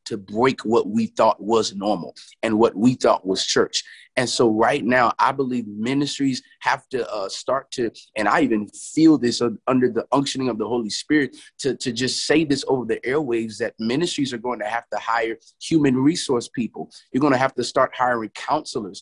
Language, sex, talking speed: English, male, 200 wpm